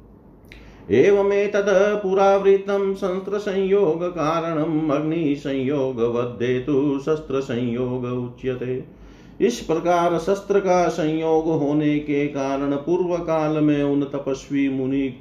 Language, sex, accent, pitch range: Hindi, male, native, 125-155 Hz